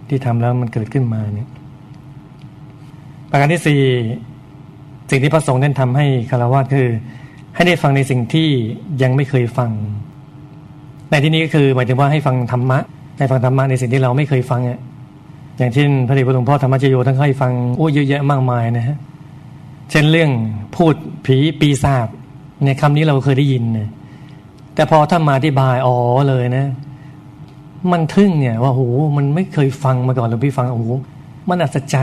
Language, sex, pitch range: Thai, male, 125-145 Hz